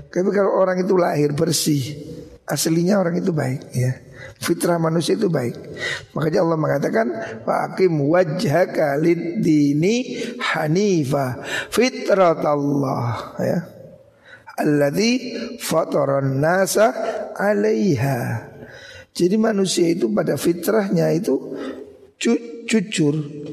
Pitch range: 150-195 Hz